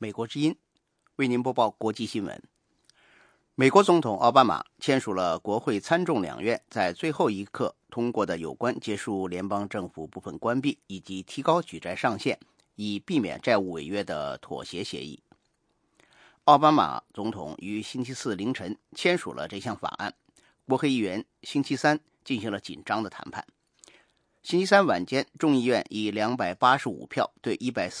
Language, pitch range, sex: English, 105-145 Hz, male